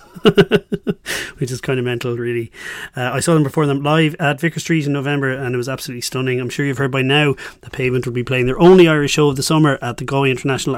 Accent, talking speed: Irish, 250 wpm